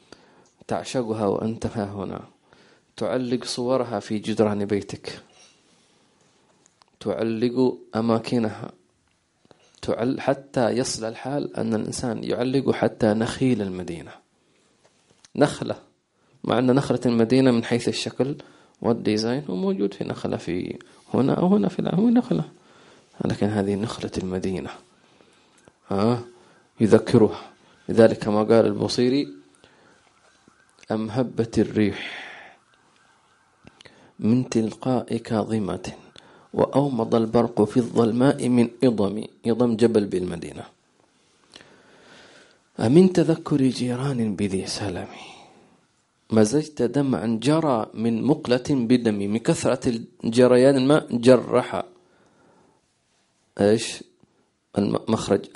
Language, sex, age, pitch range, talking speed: English, male, 30-49, 110-130 Hz, 90 wpm